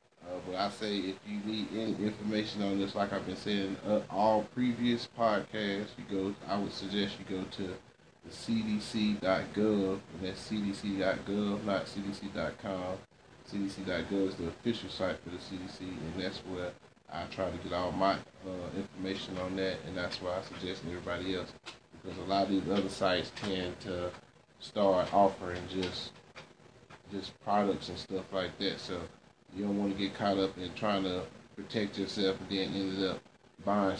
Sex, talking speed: male, 175 wpm